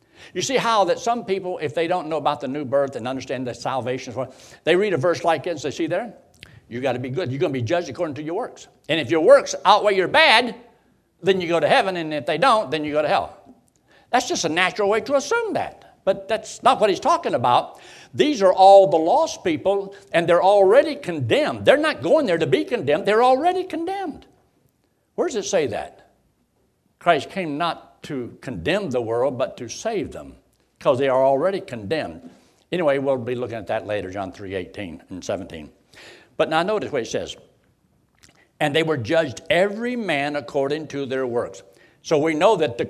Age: 60-79